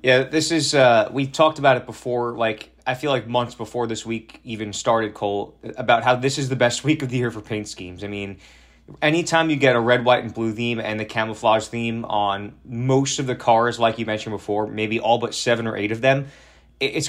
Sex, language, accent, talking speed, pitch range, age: male, English, American, 230 wpm, 110-130 Hz, 20-39